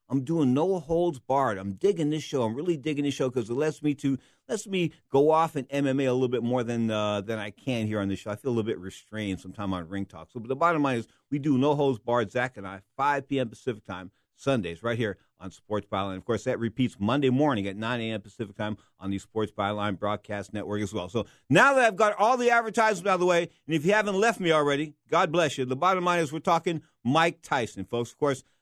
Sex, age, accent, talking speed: male, 50-69, American, 260 wpm